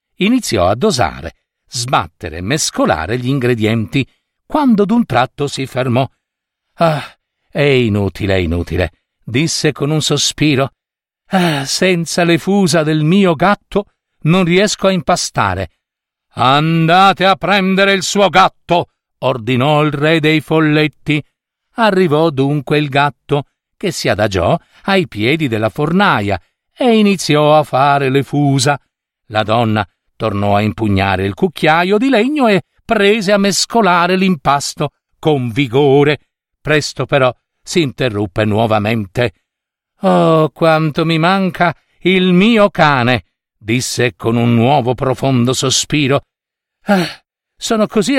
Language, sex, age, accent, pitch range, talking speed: Italian, male, 50-69, native, 130-195 Hz, 120 wpm